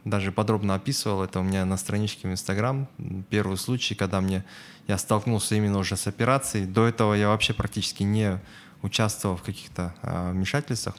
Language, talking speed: Russian, 160 wpm